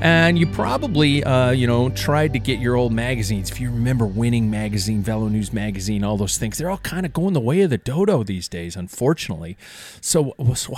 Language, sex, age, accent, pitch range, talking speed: English, male, 40-59, American, 95-130 Hz, 210 wpm